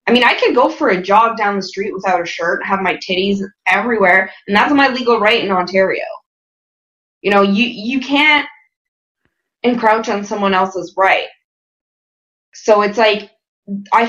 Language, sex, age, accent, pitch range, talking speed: English, female, 20-39, American, 200-265 Hz, 170 wpm